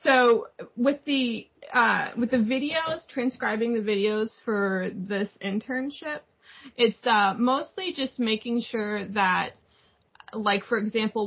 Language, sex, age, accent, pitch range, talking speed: English, female, 20-39, American, 185-225 Hz, 120 wpm